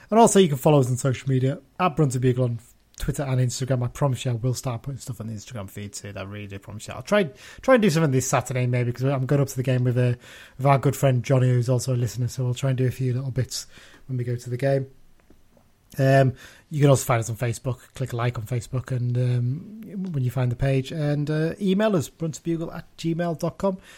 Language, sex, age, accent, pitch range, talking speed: English, male, 30-49, British, 125-155 Hz, 255 wpm